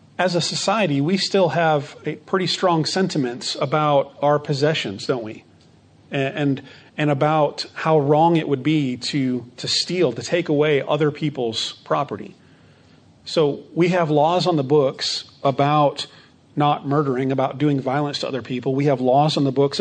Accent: American